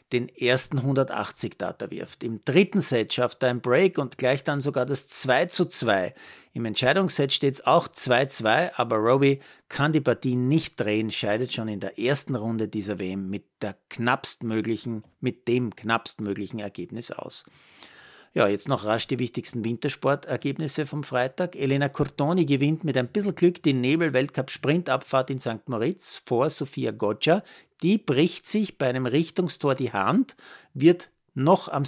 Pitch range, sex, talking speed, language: 115-155 Hz, male, 160 wpm, German